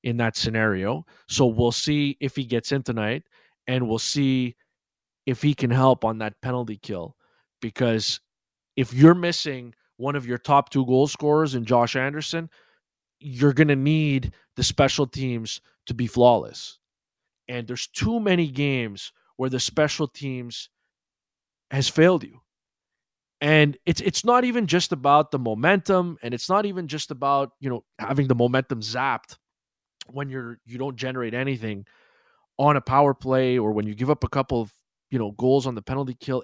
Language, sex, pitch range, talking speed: English, male, 125-155 Hz, 170 wpm